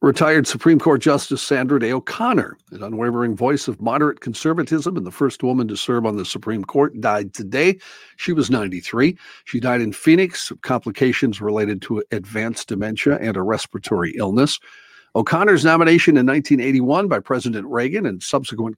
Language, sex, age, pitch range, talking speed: English, male, 50-69, 110-140 Hz, 160 wpm